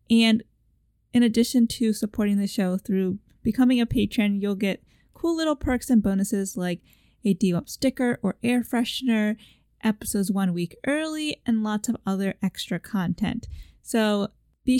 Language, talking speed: English, 150 wpm